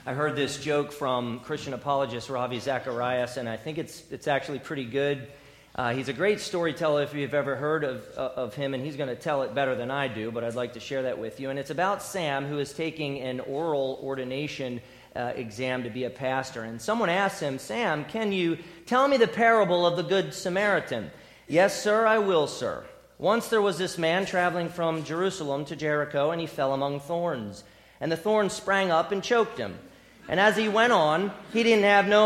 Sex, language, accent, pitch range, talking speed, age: male, English, American, 140-210 Hz, 215 wpm, 40-59